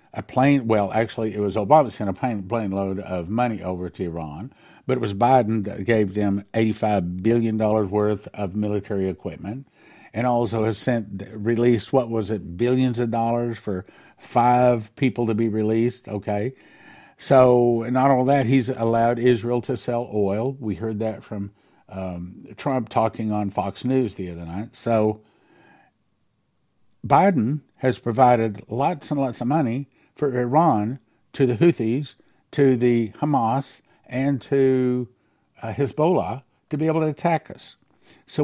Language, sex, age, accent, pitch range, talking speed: English, male, 50-69, American, 105-130 Hz, 155 wpm